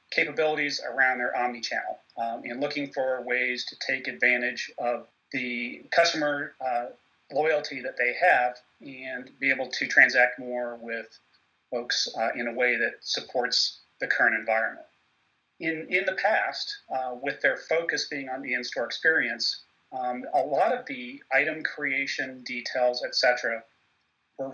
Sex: male